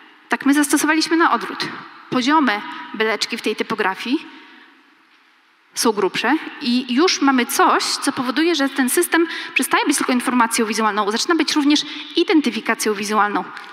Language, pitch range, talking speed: Polish, 245-300 Hz, 135 wpm